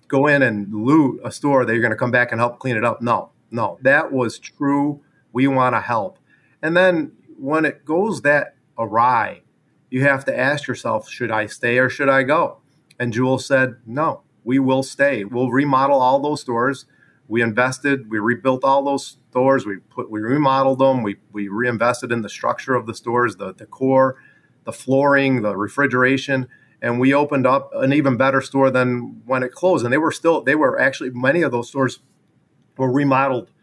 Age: 40-59